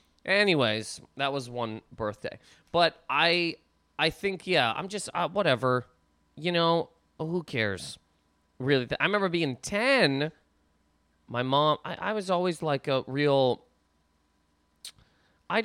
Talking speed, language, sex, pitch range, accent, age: 125 wpm, English, male, 125-175 Hz, American, 30-49